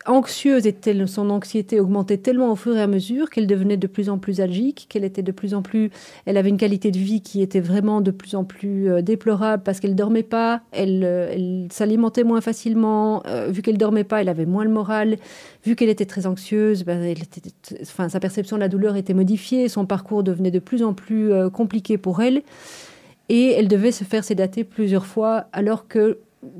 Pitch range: 190-220 Hz